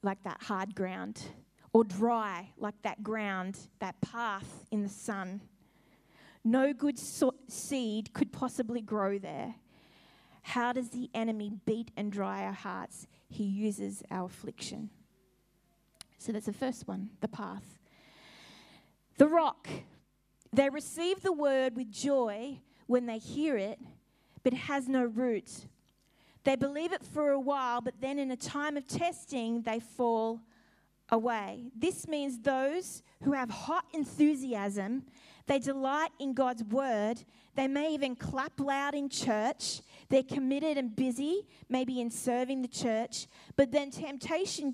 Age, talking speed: 20-39, 140 wpm